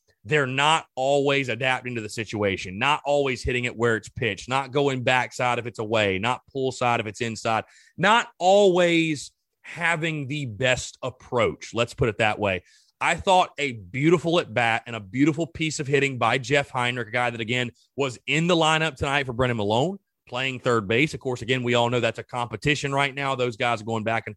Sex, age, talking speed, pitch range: male, 30-49, 205 wpm, 120-170 Hz